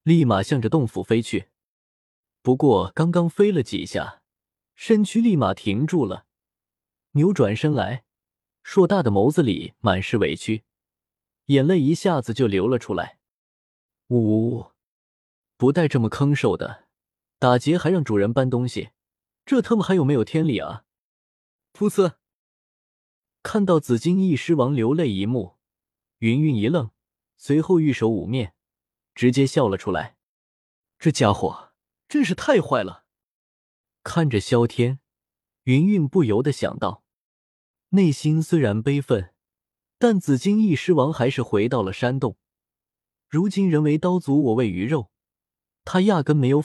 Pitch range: 110-160 Hz